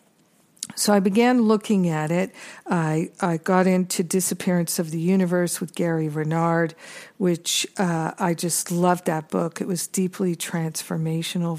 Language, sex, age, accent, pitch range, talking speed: English, female, 50-69, American, 170-200 Hz, 145 wpm